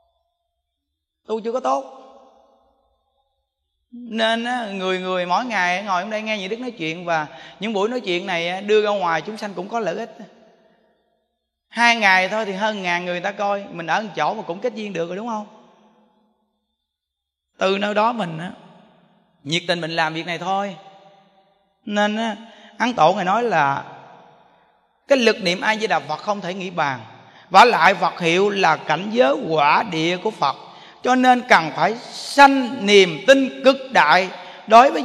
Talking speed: 180 wpm